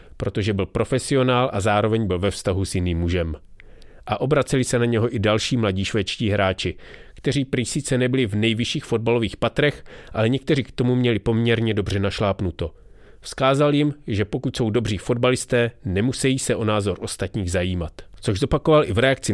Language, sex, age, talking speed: English, male, 30-49, 170 wpm